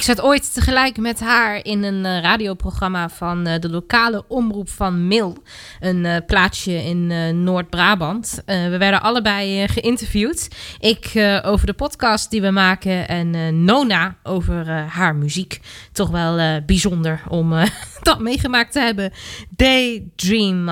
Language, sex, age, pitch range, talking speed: Dutch, female, 20-39, 175-230 Hz, 155 wpm